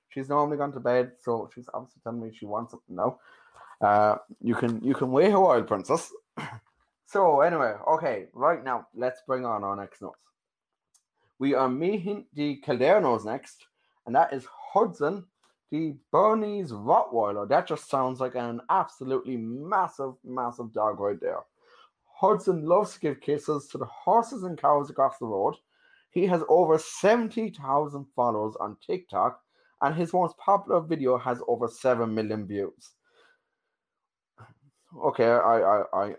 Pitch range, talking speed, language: 120-180 Hz, 150 wpm, English